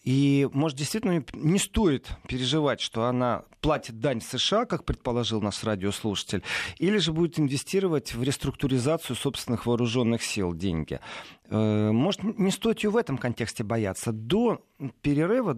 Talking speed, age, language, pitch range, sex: 135 wpm, 40-59, Russian, 115-165 Hz, male